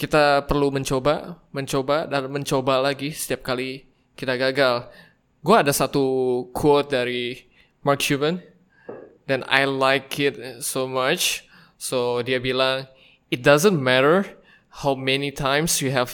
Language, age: Indonesian, 20-39